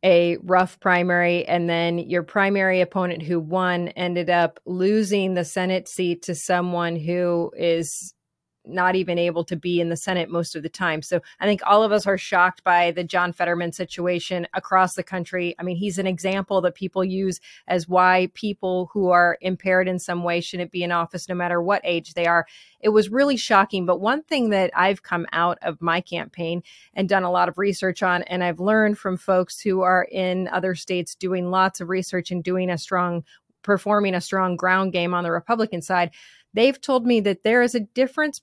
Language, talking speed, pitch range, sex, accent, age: English, 205 wpm, 175-205 Hz, female, American, 30-49